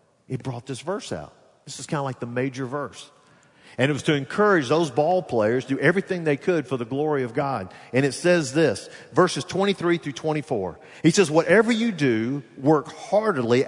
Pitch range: 130-175 Hz